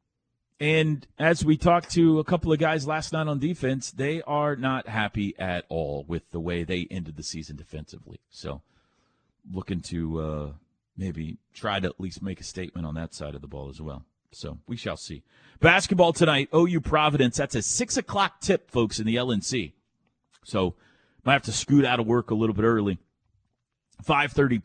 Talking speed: 185 wpm